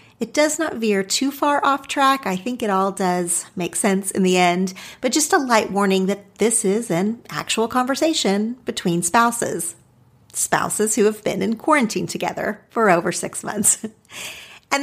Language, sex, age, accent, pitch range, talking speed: English, female, 40-59, American, 180-240 Hz, 175 wpm